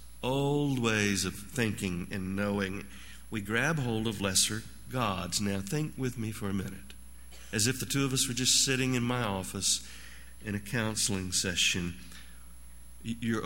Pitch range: 95-150 Hz